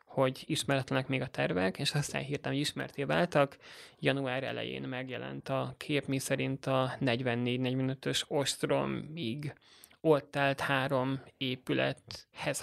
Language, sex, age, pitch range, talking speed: Hungarian, male, 20-39, 130-145 Hz, 115 wpm